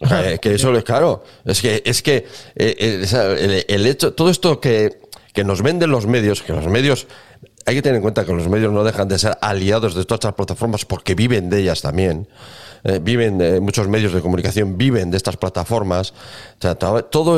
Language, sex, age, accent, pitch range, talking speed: Spanish, male, 40-59, Spanish, 100-130 Hz, 205 wpm